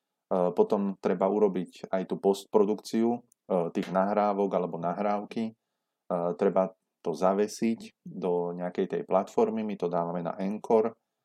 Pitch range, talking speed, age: 85-100 Hz, 115 wpm, 30-49